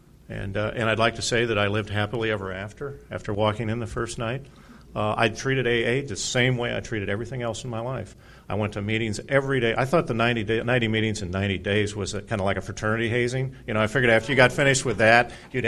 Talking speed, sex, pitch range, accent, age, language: 255 wpm, male, 95-125 Hz, American, 50-69, English